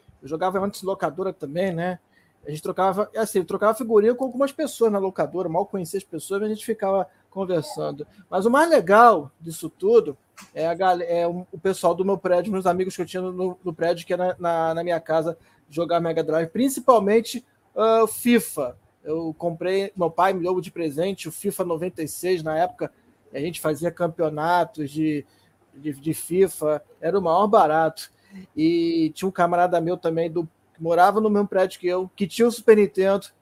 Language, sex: Portuguese, male